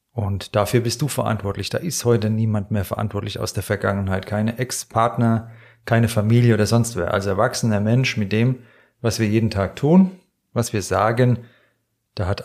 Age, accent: 30-49, German